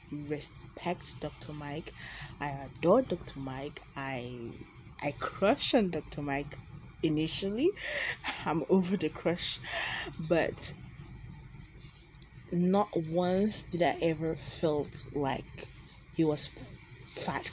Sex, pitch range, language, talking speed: female, 135-165 Hz, English, 100 wpm